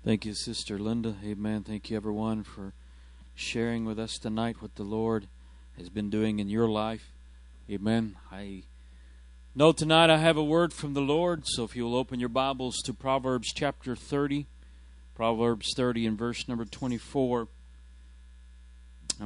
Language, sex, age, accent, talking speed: English, male, 40-59, American, 155 wpm